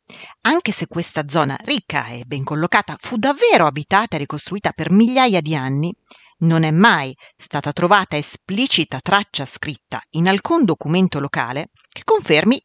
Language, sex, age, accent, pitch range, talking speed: Italian, female, 40-59, native, 150-225 Hz, 145 wpm